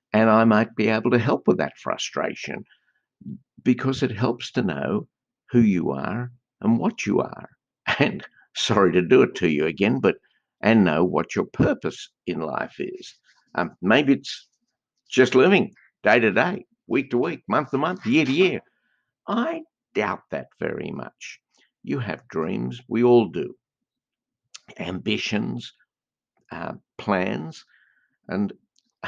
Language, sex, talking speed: English, male, 145 wpm